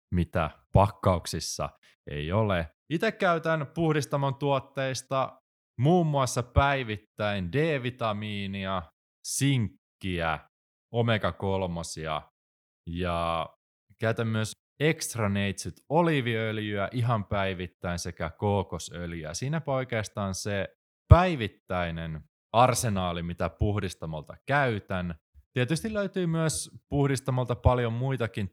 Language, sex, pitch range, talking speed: Finnish, male, 85-135 Hz, 80 wpm